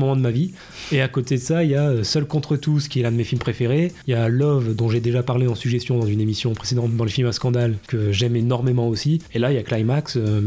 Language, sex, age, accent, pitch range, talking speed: French, male, 20-39, French, 120-145 Hz, 290 wpm